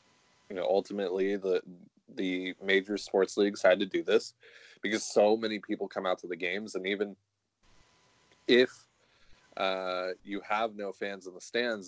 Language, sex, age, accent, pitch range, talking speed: English, male, 20-39, American, 90-100 Hz, 160 wpm